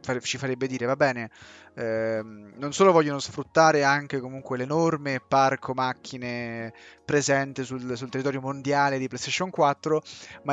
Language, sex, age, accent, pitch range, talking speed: Italian, male, 20-39, native, 125-155 Hz, 135 wpm